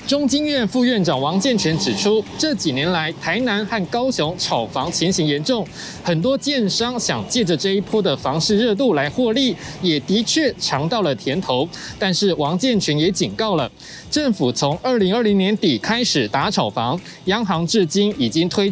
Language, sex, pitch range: Chinese, male, 165-230 Hz